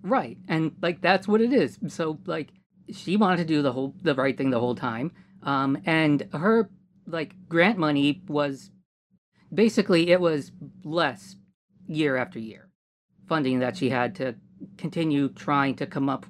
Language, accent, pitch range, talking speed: English, American, 130-185 Hz, 165 wpm